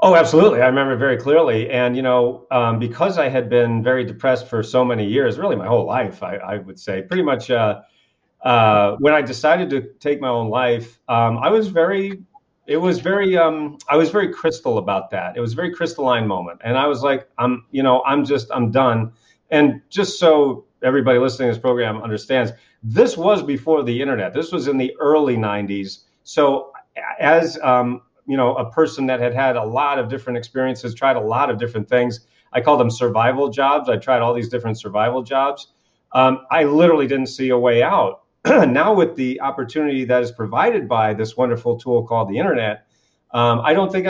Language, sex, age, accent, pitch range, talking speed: English, male, 40-59, American, 120-145 Hz, 205 wpm